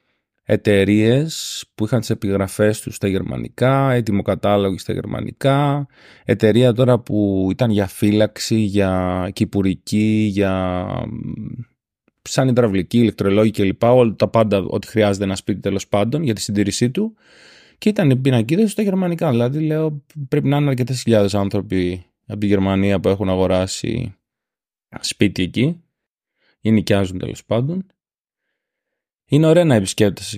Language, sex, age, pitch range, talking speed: Greek, male, 30-49, 100-125 Hz, 130 wpm